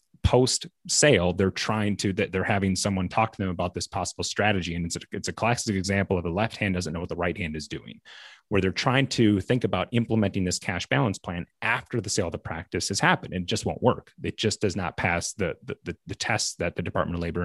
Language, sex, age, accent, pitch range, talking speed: English, male, 30-49, American, 90-115 Hz, 250 wpm